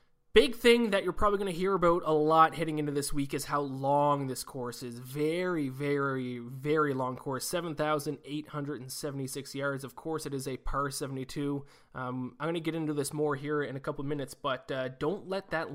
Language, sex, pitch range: English, male, 130-150 Hz